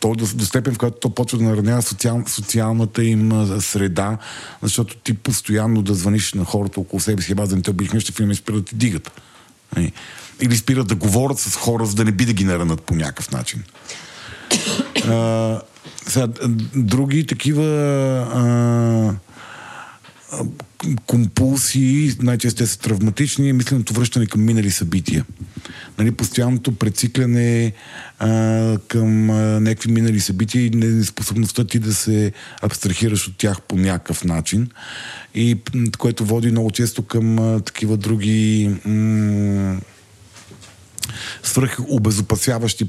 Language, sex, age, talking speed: Bulgarian, male, 50-69, 130 wpm